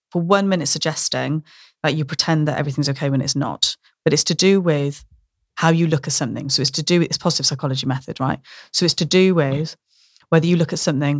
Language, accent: English, British